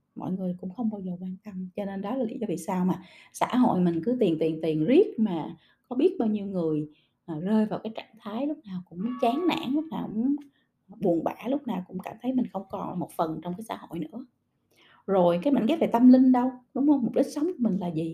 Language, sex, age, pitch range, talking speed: Vietnamese, female, 20-39, 185-260 Hz, 260 wpm